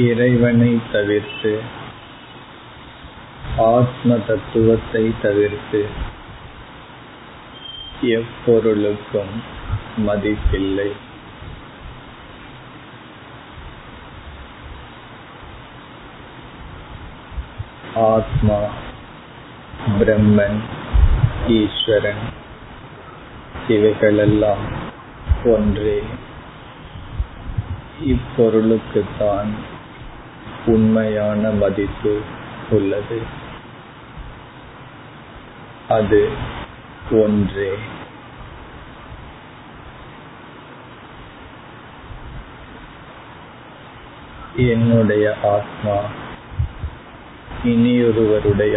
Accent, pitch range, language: native, 105-115 Hz, Tamil